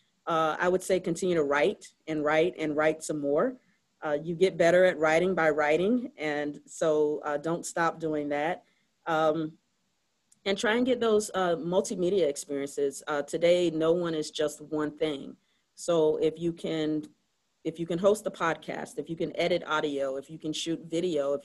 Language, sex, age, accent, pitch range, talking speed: English, female, 40-59, American, 150-170 Hz, 185 wpm